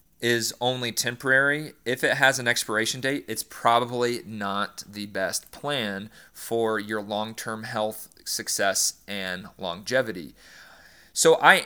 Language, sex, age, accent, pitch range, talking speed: English, male, 40-59, American, 110-130 Hz, 125 wpm